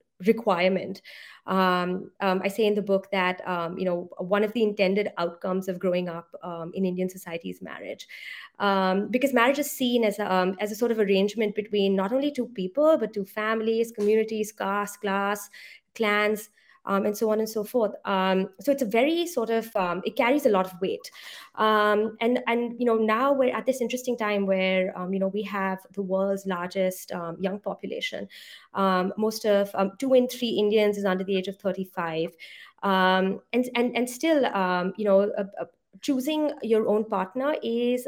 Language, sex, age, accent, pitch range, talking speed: English, female, 20-39, Indian, 195-240 Hz, 195 wpm